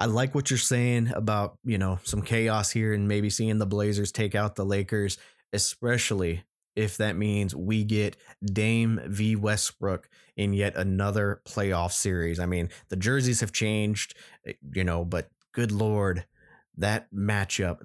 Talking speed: 160 wpm